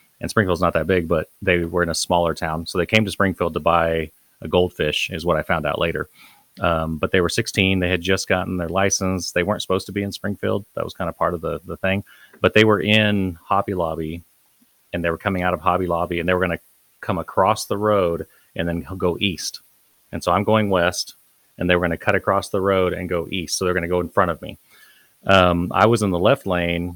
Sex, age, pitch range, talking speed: male, 30-49, 85-95 Hz, 255 wpm